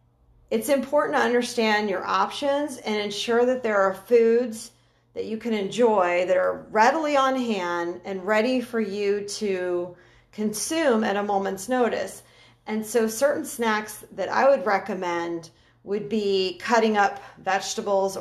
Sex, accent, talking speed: female, American, 145 wpm